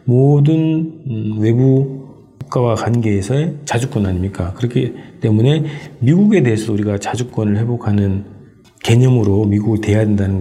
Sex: male